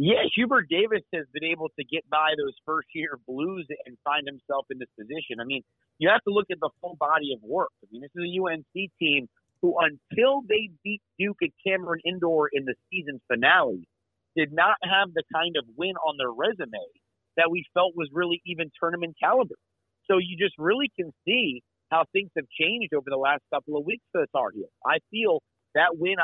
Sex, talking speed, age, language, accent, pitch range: male, 205 wpm, 40-59, English, American, 145-180 Hz